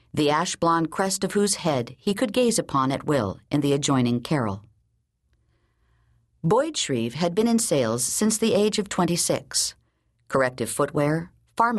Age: 50-69